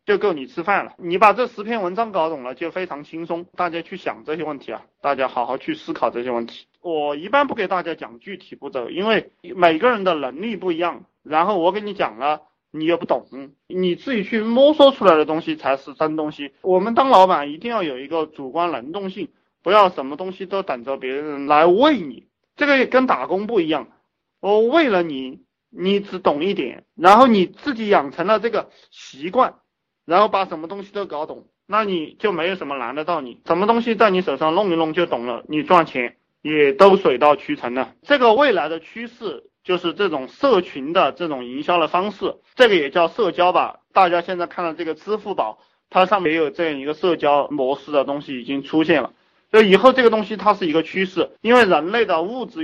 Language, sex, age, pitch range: Chinese, male, 30-49, 155-210 Hz